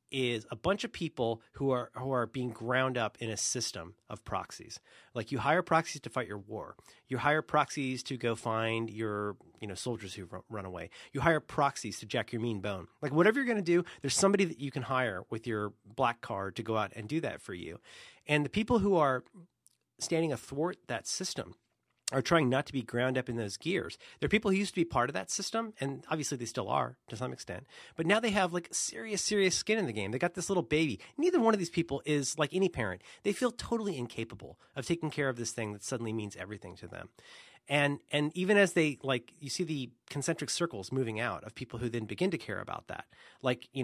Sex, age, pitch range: male, 30-49, 115-165 Hz